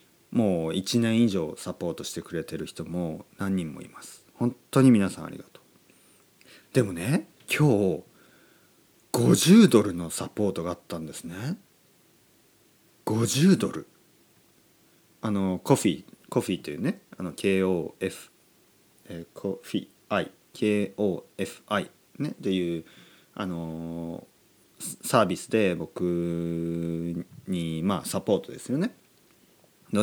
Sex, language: male, Japanese